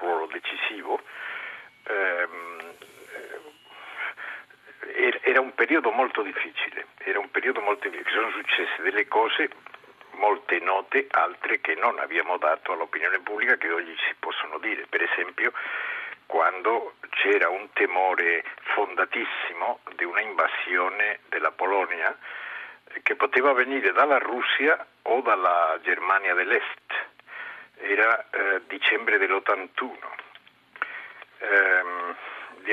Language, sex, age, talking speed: Italian, male, 60-79, 105 wpm